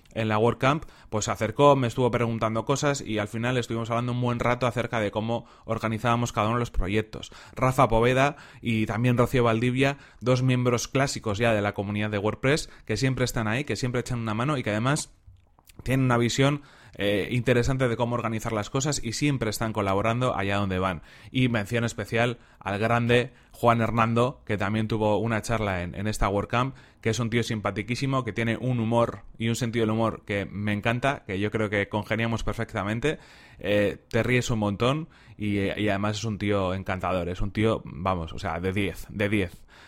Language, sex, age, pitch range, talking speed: Spanish, male, 30-49, 105-120 Hz, 200 wpm